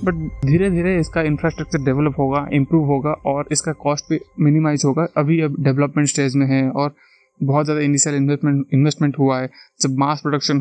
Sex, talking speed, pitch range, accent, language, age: male, 175 wpm, 140-155 Hz, native, Hindi, 20-39